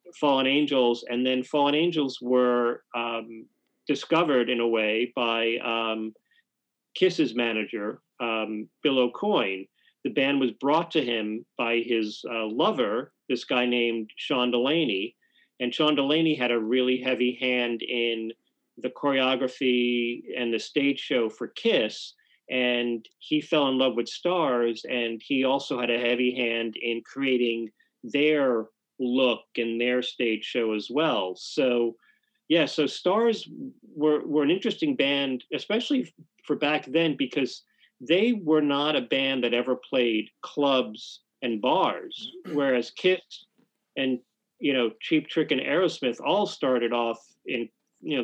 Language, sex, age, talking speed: English, male, 40-59, 145 wpm